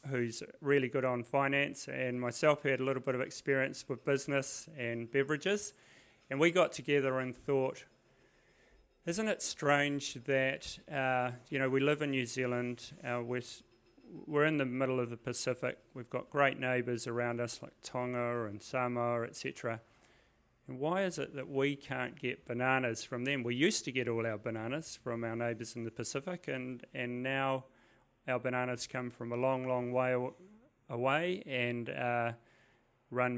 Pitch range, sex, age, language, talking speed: 120-140 Hz, male, 30-49, English, 175 wpm